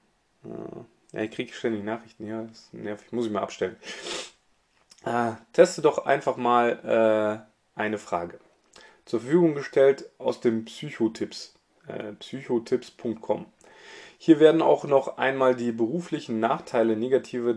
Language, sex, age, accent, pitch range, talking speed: German, male, 30-49, German, 110-165 Hz, 130 wpm